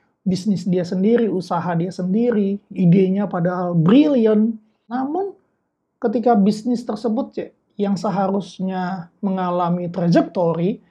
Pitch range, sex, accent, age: 185-235 Hz, male, native, 30-49